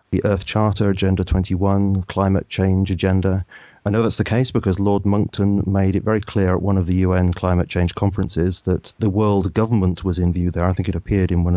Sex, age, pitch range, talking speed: male, 30-49, 95-110 Hz, 220 wpm